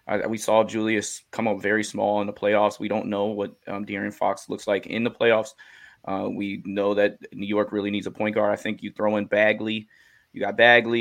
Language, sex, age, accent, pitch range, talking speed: English, male, 20-39, American, 100-110 Hz, 230 wpm